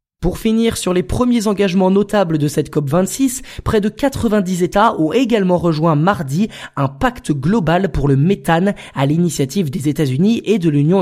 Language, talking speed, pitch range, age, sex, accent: French, 170 wpm, 150-200 Hz, 20-39, male, French